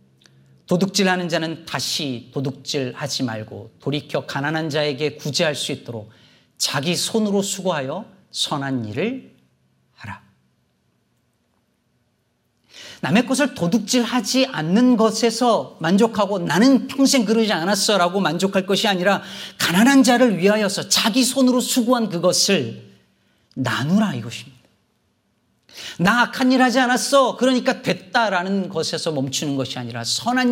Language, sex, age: Korean, male, 40-59